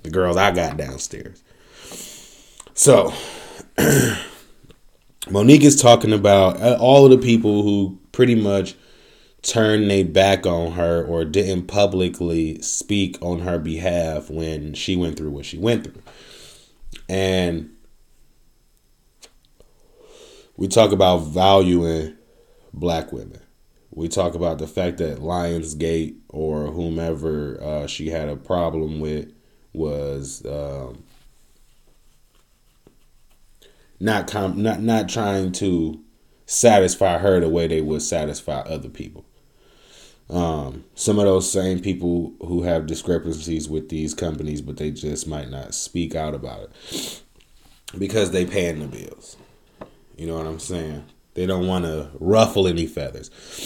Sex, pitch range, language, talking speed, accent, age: male, 80-95 Hz, English, 125 wpm, American, 20-39